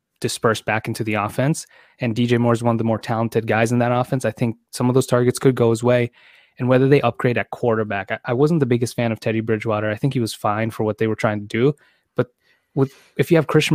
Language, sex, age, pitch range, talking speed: English, male, 20-39, 110-125 Hz, 265 wpm